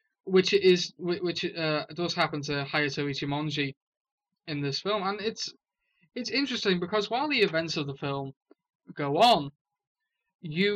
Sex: male